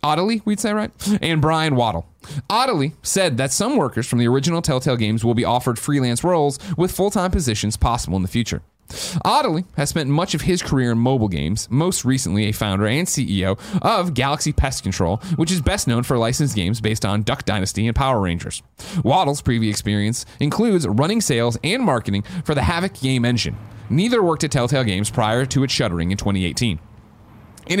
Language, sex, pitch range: English, male, 110-160 Hz